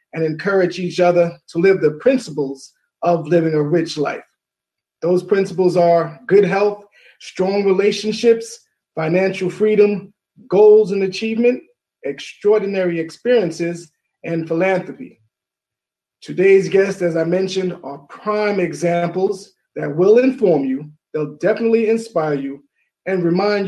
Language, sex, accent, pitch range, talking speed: English, male, American, 160-200 Hz, 120 wpm